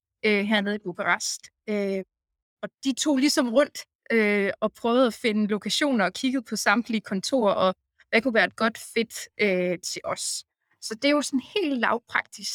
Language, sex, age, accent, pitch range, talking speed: Danish, female, 20-39, native, 195-235 Hz, 180 wpm